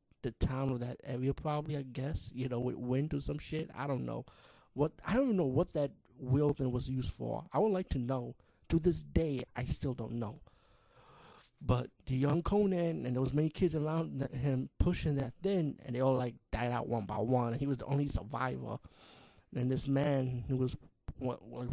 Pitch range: 120-140 Hz